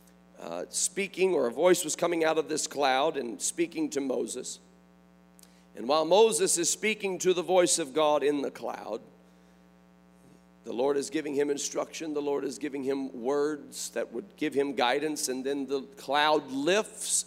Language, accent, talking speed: English, American, 175 wpm